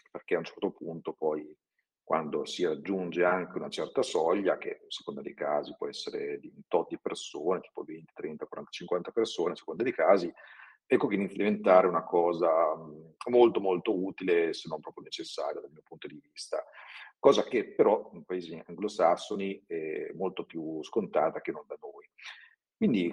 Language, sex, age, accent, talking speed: Italian, male, 40-59, native, 175 wpm